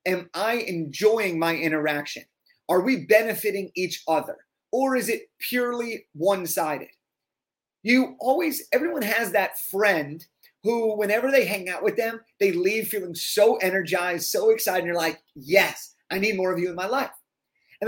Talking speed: 160 wpm